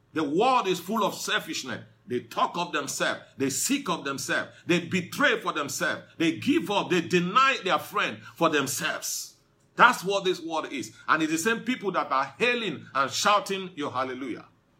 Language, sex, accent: English, male, Nigerian